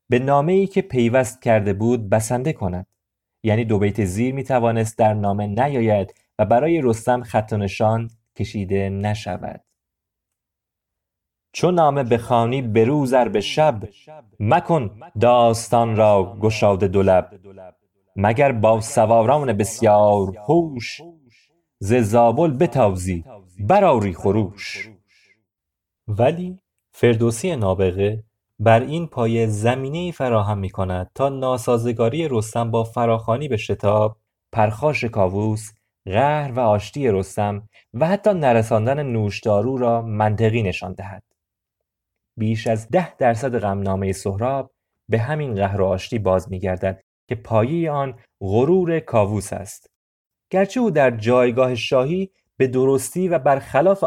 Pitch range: 100-130 Hz